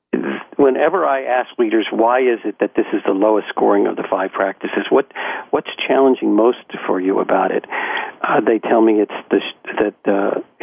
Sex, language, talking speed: male, English, 185 wpm